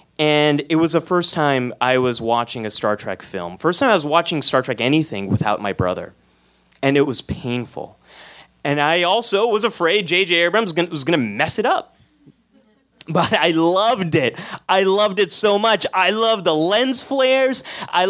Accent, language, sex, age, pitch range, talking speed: American, English, male, 30-49, 115-180 Hz, 185 wpm